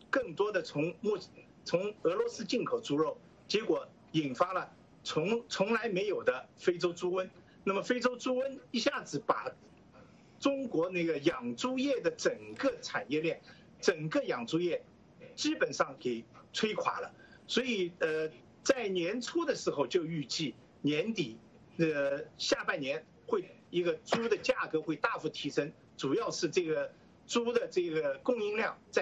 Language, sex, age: English, male, 50-69